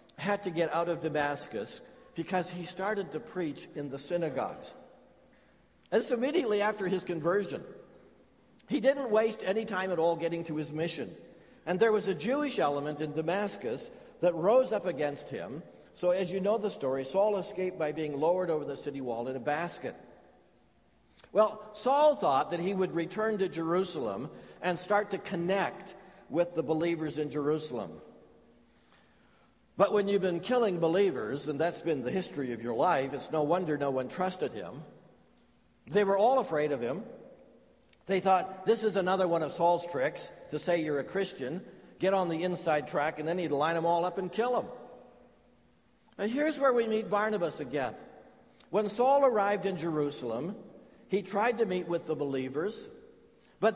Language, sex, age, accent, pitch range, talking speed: English, male, 60-79, American, 160-210 Hz, 175 wpm